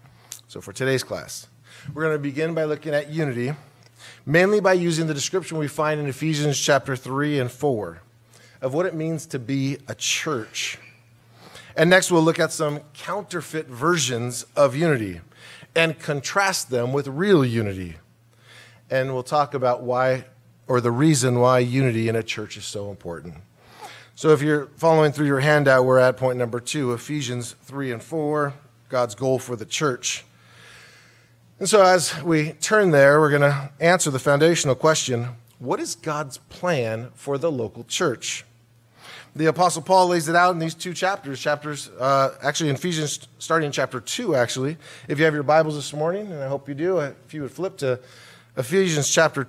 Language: English